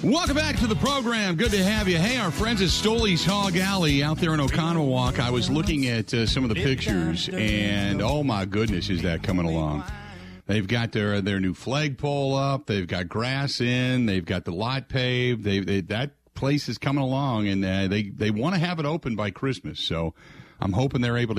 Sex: male